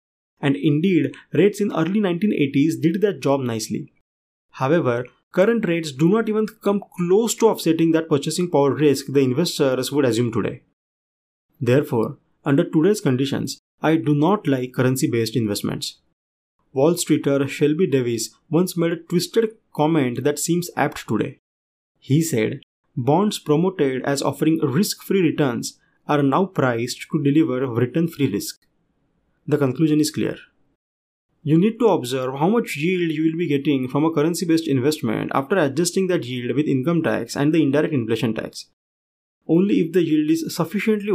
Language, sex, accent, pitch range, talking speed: English, male, Indian, 135-175 Hz, 155 wpm